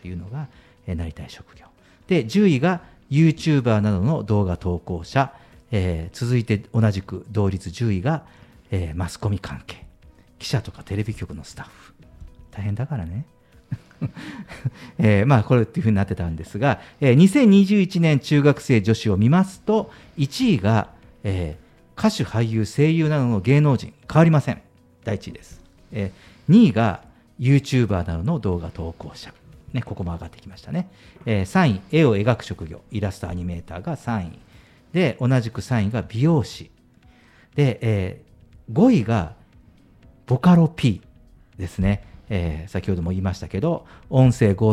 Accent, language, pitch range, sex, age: native, Japanese, 95-140 Hz, male, 50-69